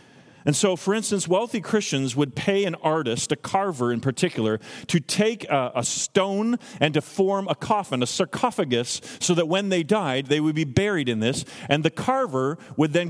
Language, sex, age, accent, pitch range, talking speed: English, male, 40-59, American, 135-185 Hz, 190 wpm